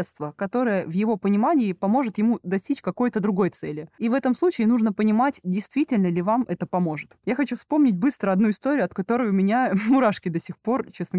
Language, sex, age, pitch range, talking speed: Russian, female, 20-39, 190-250 Hz, 195 wpm